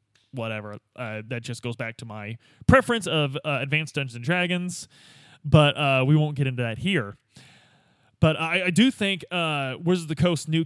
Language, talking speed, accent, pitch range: English, 190 wpm, American, 120-160 Hz